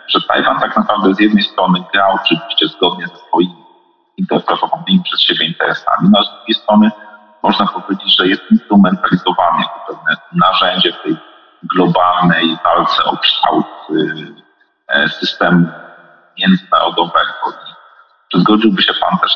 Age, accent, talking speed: 40-59, native, 130 wpm